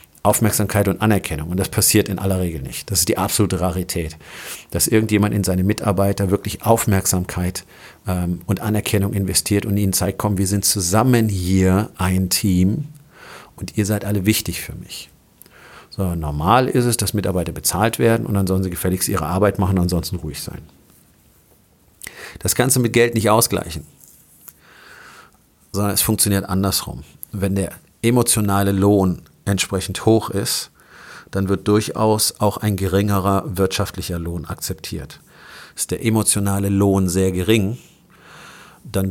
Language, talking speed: German, 150 wpm